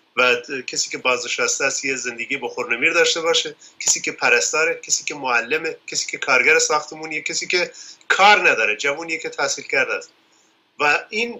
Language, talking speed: Persian, 165 wpm